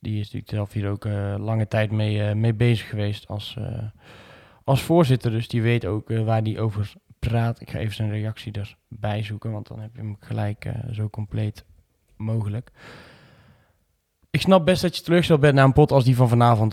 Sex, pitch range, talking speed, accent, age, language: male, 105-120 Hz, 210 wpm, Dutch, 20-39, Dutch